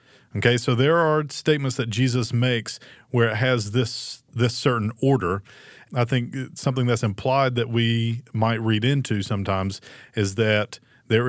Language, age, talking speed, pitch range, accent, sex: English, 40-59, 160 wpm, 110-135 Hz, American, male